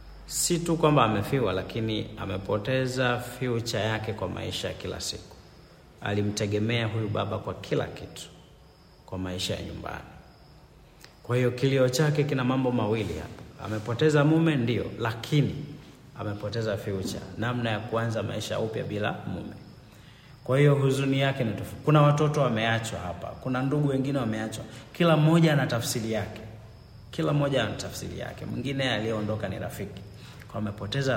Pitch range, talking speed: 105-135 Hz, 140 wpm